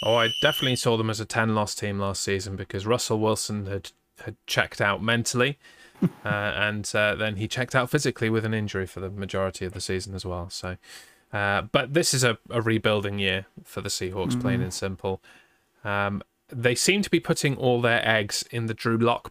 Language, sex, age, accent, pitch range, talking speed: English, male, 20-39, British, 100-125 Hz, 205 wpm